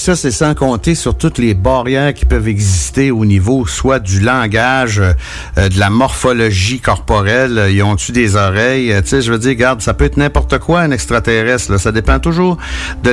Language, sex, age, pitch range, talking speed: French, male, 60-79, 100-135 Hz, 205 wpm